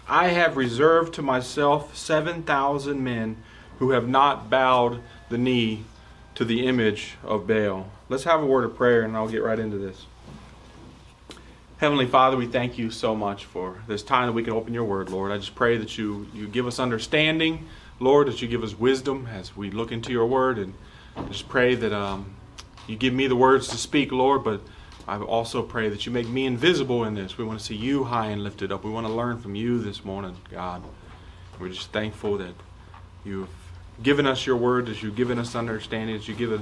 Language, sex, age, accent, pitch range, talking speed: English, male, 30-49, American, 100-125 Hz, 210 wpm